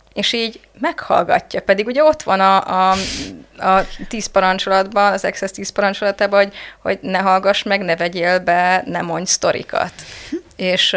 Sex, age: female, 20-39